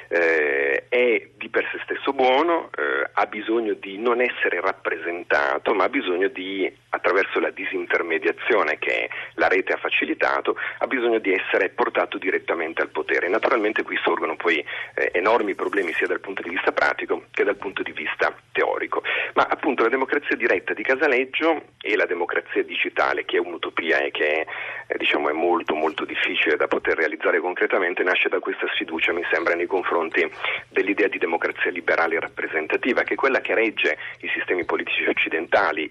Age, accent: 40-59, native